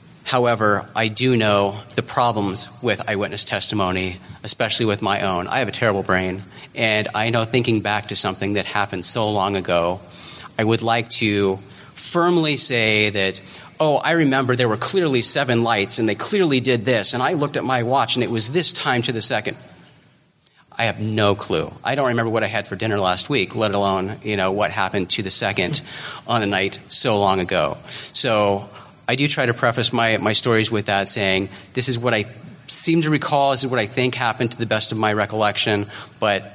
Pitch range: 105-130 Hz